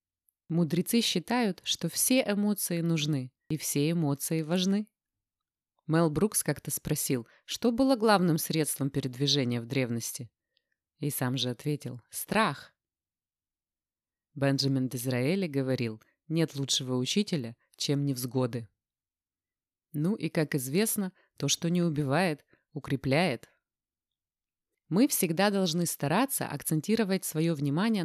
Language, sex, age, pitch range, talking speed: Russian, female, 20-39, 130-175 Hz, 110 wpm